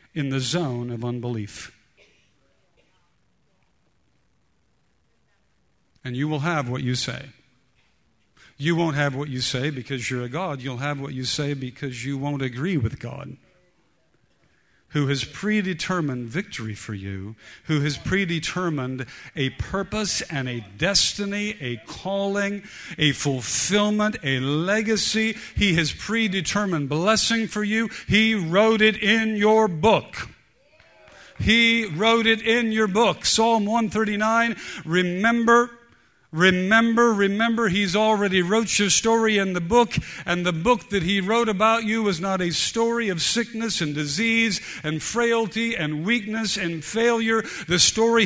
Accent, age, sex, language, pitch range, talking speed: American, 50-69, male, English, 155-225 Hz, 135 wpm